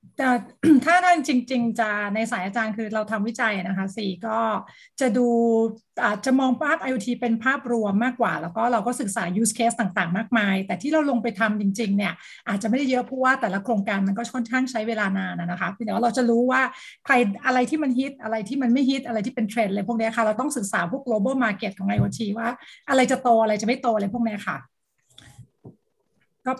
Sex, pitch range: female, 215-255 Hz